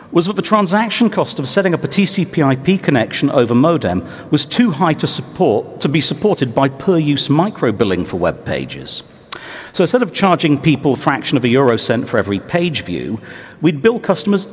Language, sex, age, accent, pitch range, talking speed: English, male, 50-69, British, 125-170 Hz, 190 wpm